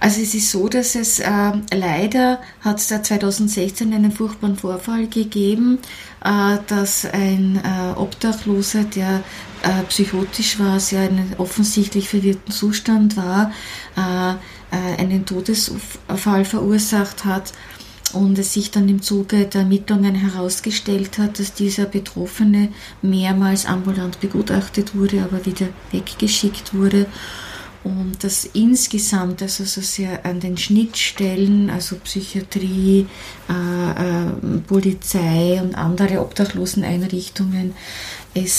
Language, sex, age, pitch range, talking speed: German, female, 30-49, 185-205 Hz, 115 wpm